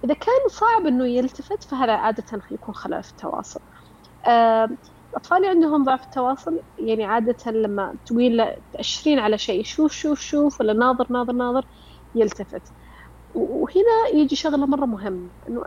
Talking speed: 135 wpm